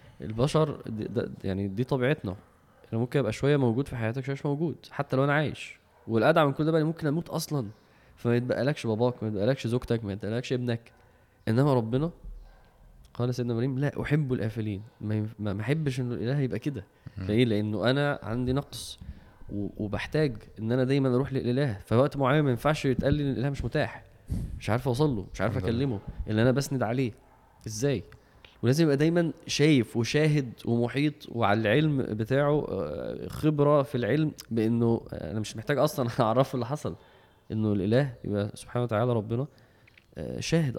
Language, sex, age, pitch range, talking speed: Arabic, male, 20-39, 110-140 Hz, 160 wpm